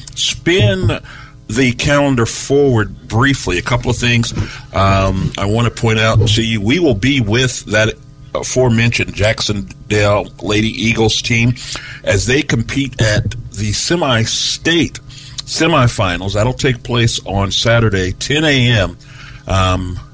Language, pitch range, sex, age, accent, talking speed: English, 100-130 Hz, male, 50-69, American, 130 wpm